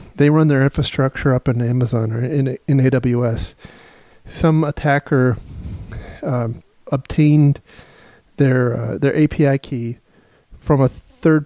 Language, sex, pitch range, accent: English, male, 125-150 Hz, American